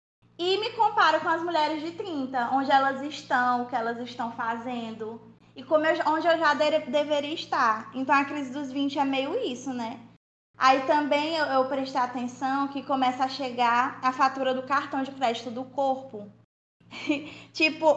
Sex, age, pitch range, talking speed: female, 20-39, 250-295 Hz, 175 wpm